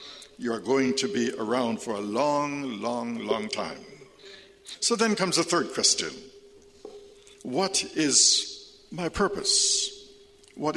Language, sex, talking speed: English, male, 130 wpm